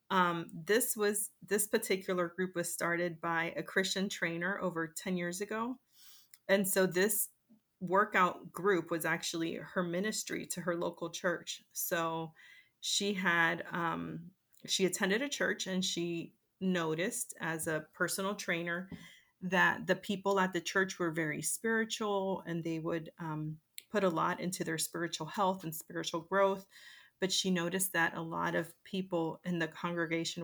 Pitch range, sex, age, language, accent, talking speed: 170-195 Hz, female, 30-49, English, American, 155 wpm